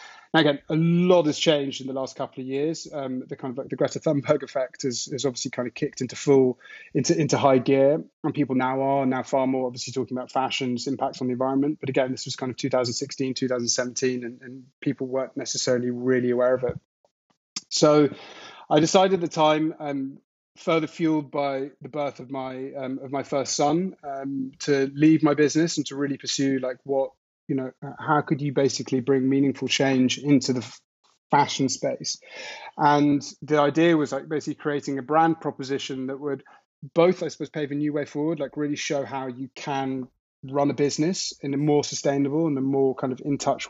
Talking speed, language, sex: 200 wpm, English, male